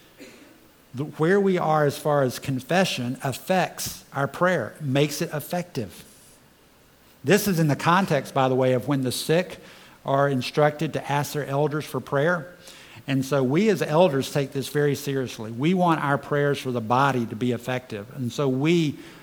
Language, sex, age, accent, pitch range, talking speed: English, male, 50-69, American, 130-150 Hz, 170 wpm